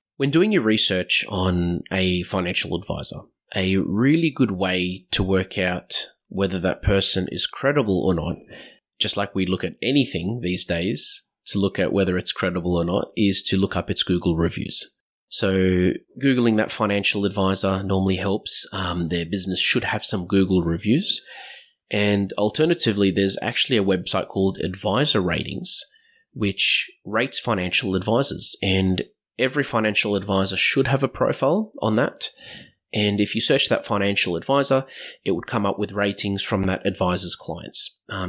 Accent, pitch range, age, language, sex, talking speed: Australian, 95-110 Hz, 30-49, English, male, 160 wpm